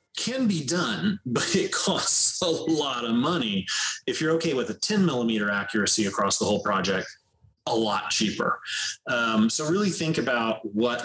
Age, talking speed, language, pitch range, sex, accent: 30-49, 170 wpm, English, 105-130 Hz, male, American